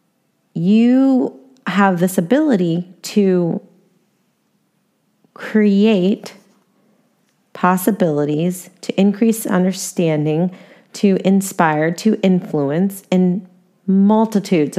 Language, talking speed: English, 65 wpm